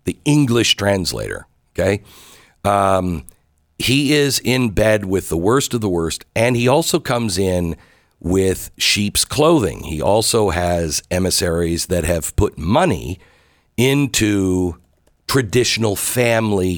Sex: male